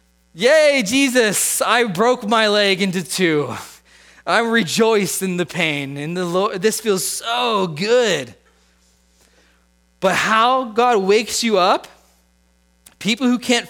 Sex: male